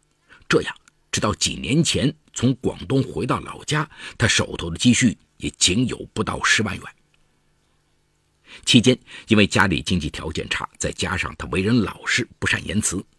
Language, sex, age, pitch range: Chinese, male, 50-69, 85-140 Hz